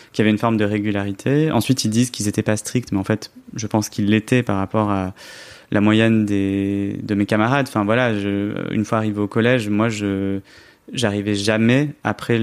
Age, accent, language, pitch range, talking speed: 20-39, French, French, 105-120 Hz, 210 wpm